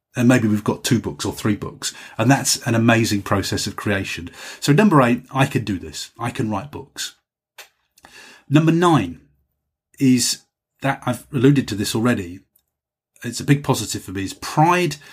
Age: 30-49